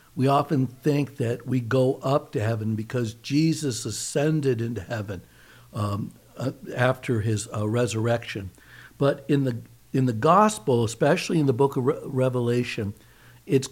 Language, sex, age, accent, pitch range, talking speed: English, male, 60-79, American, 115-145 Hz, 135 wpm